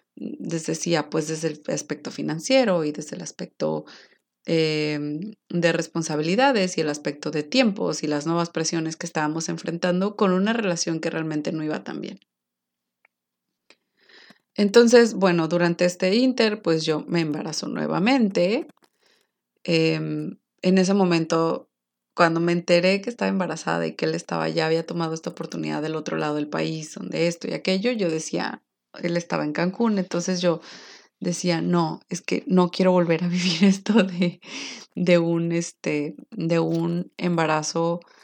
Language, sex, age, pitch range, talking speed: Spanish, female, 30-49, 160-185 Hz, 150 wpm